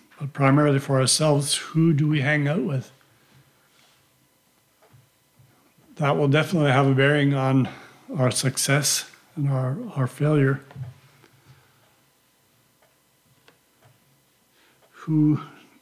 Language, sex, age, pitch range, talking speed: English, male, 60-79, 135-150 Hz, 90 wpm